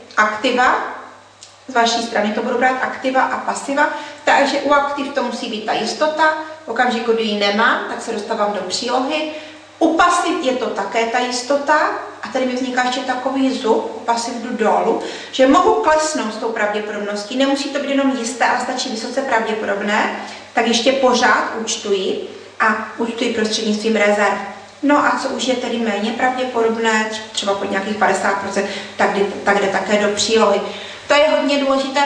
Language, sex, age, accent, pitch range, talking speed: Czech, female, 30-49, native, 220-270 Hz, 170 wpm